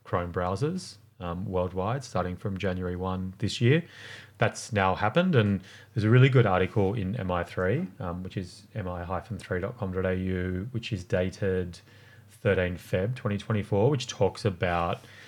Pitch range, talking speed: 95-115 Hz, 135 wpm